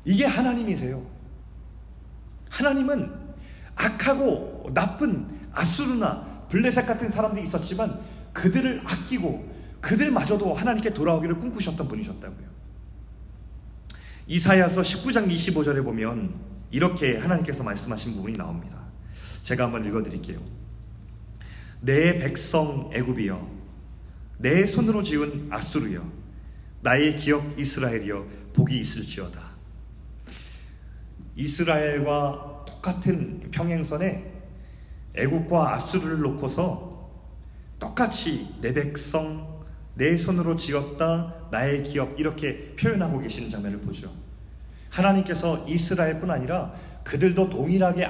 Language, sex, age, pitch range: Korean, male, 30-49, 125-190 Hz